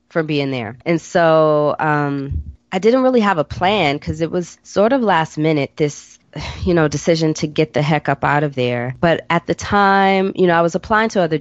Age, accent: 20-39, American